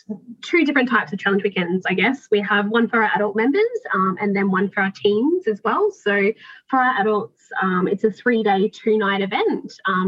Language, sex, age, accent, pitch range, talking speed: English, female, 20-39, Australian, 190-225 Hz, 210 wpm